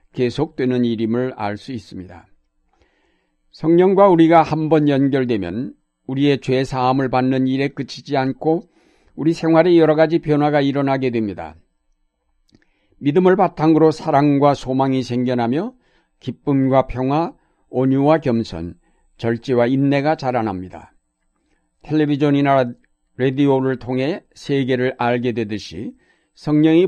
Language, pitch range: Korean, 120-145 Hz